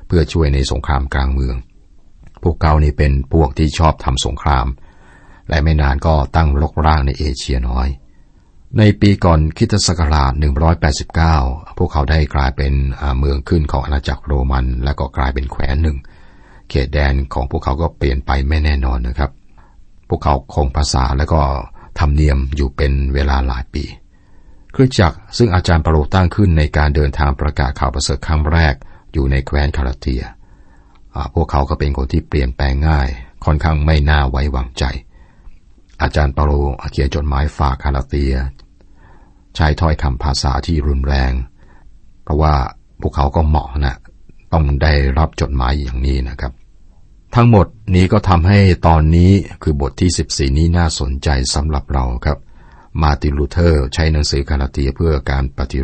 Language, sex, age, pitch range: Thai, male, 60-79, 70-80 Hz